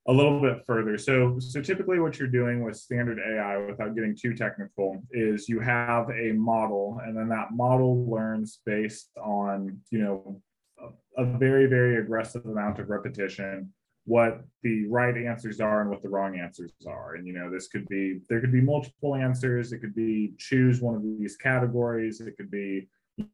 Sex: male